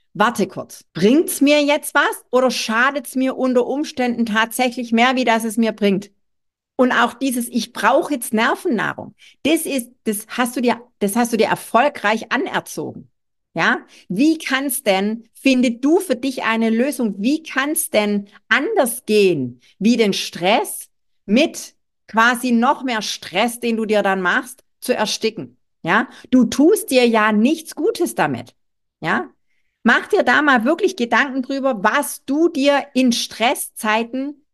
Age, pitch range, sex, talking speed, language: 50-69, 200-265 Hz, female, 155 wpm, German